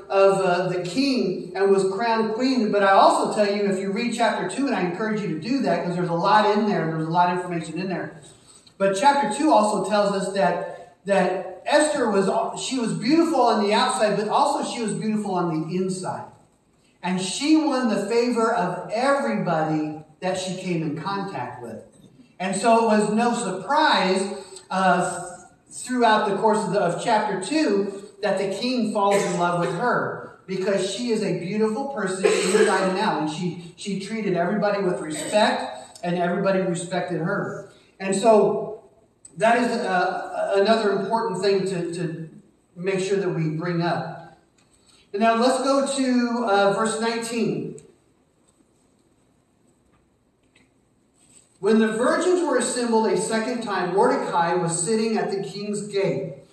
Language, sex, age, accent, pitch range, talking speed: English, male, 40-59, American, 180-225 Hz, 165 wpm